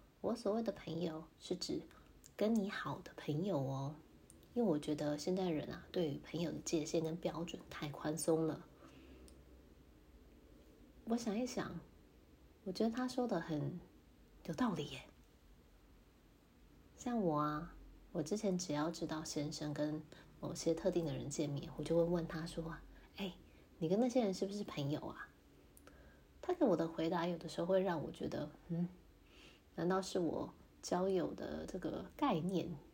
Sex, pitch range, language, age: female, 150-190 Hz, Chinese, 20-39